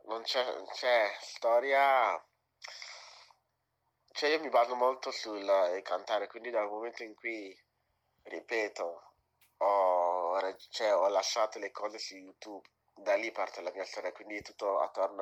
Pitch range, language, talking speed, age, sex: 90-115 Hz, Italian, 140 wpm, 30-49, male